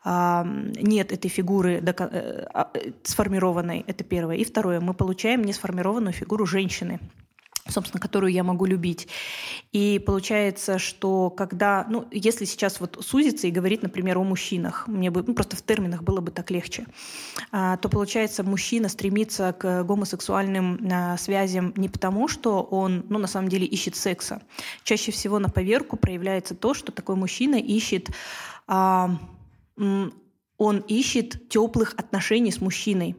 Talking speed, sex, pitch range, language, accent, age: 135 wpm, female, 185-220 Hz, Russian, native, 20-39